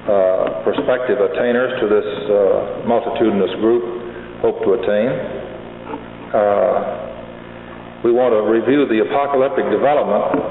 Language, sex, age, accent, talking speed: English, male, 50-69, American, 110 wpm